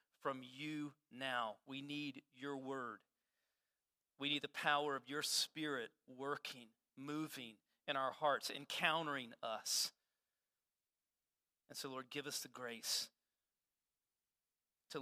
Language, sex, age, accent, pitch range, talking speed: English, male, 40-59, American, 145-220 Hz, 115 wpm